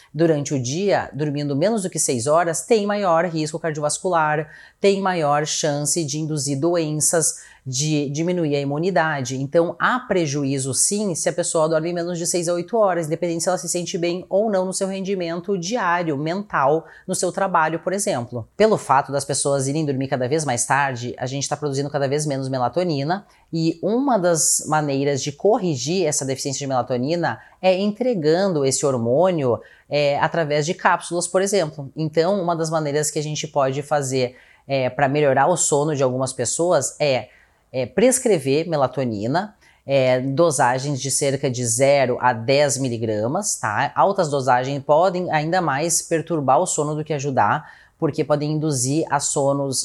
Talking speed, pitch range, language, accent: 170 wpm, 140-175 Hz, Portuguese, Brazilian